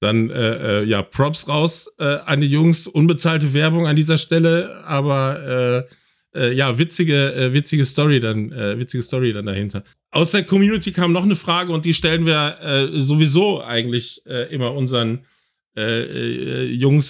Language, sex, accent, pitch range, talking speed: German, male, German, 130-160 Hz, 170 wpm